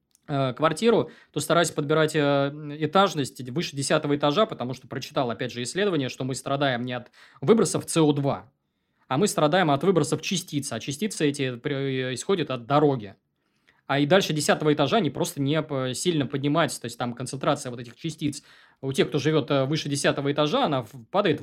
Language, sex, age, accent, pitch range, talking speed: Russian, male, 20-39, native, 130-155 Hz, 170 wpm